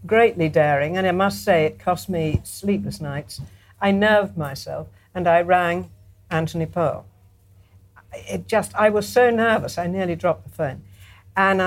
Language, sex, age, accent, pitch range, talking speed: English, female, 60-79, British, 145-200 Hz, 160 wpm